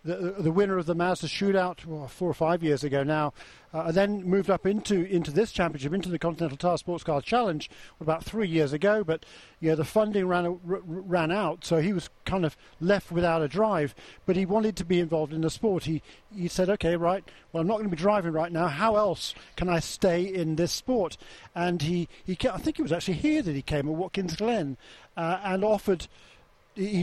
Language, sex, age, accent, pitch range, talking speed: English, male, 50-69, British, 160-195 Hz, 225 wpm